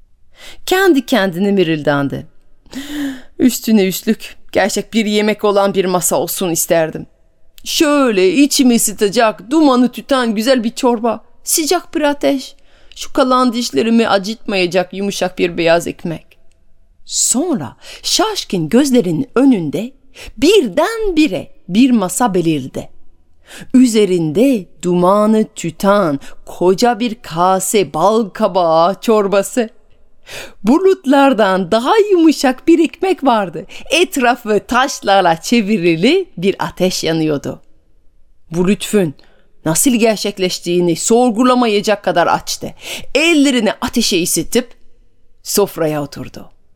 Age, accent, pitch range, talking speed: 30-49, native, 180-255 Hz, 95 wpm